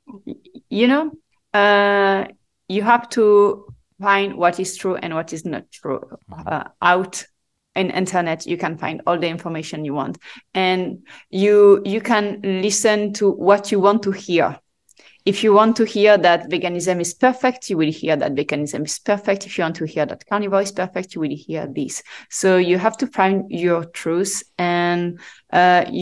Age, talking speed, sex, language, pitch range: 30-49, 175 wpm, female, English, 170-205 Hz